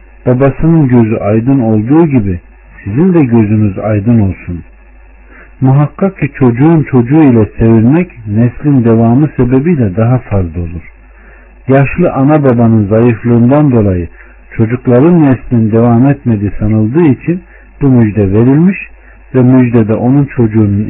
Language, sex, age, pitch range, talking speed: Turkish, male, 60-79, 105-140 Hz, 120 wpm